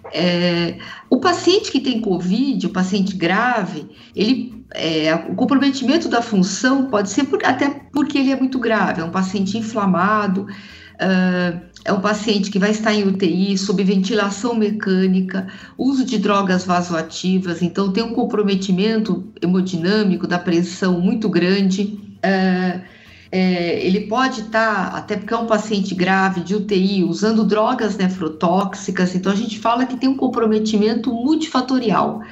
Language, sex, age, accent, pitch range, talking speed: Portuguese, female, 50-69, Brazilian, 190-250 Hz, 135 wpm